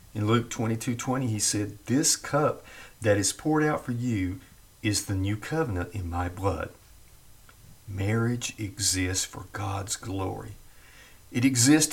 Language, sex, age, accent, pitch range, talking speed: English, male, 50-69, American, 95-120 Hz, 135 wpm